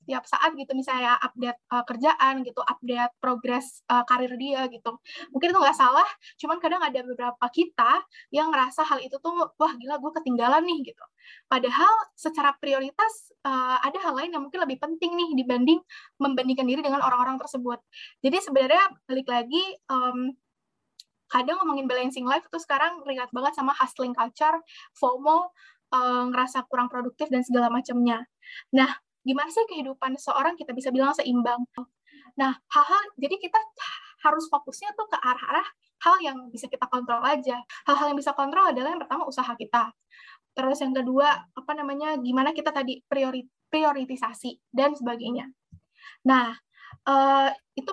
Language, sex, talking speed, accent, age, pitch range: Indonesian, female, 155 wpm, native, 10-29, 255-310 Hz